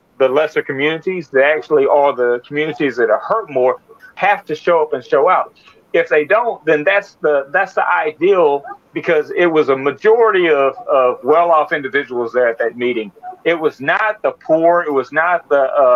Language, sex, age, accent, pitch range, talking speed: English, male, 40-59, American, 145-185 Hz, 190 wpm